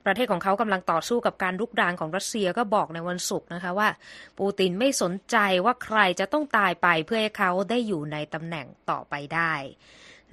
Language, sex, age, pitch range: Thai, female, 20-39, 180-215 Hz